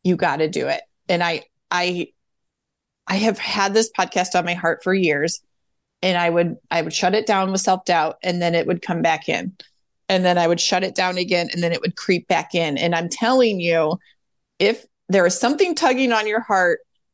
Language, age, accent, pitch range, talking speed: English, 30-49, American, 175-220 Hz, 215 wpm